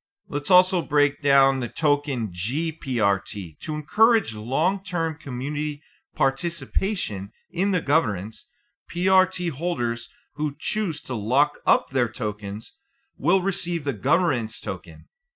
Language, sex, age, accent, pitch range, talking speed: English, male, 40-59, American, 120-165 Hz, 115 wpm